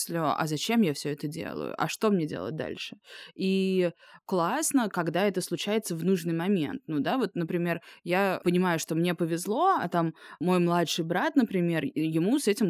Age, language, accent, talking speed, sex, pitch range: 20-39, Russian, native, 175 wpm, female, 160-190 Hz